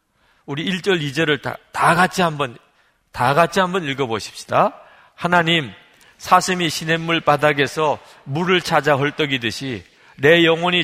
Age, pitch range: 40-59, 135-190 Hz